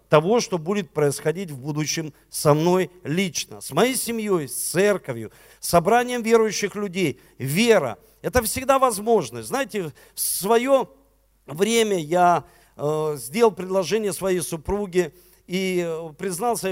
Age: 50-69